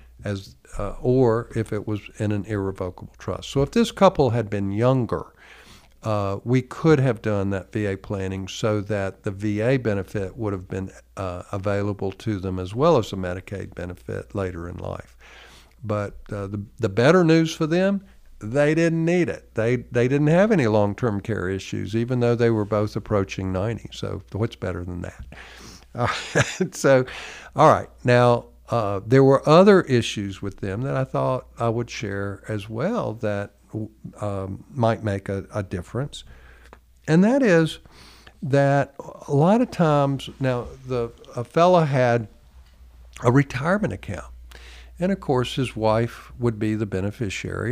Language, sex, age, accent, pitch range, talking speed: English, male, 50-69, American, 100-125 Hz, 165 wpm